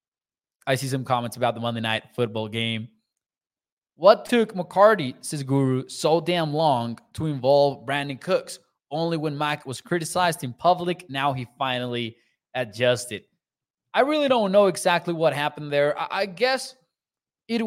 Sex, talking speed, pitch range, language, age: male, 150 wpm, 130-180 Hz, English, 20-39